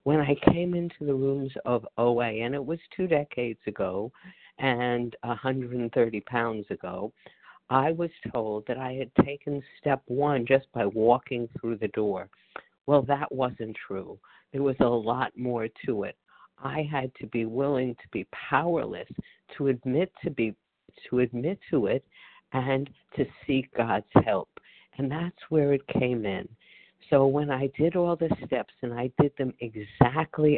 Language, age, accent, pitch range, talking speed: English, 50-69, American, 120-145 Hz, 155 wpm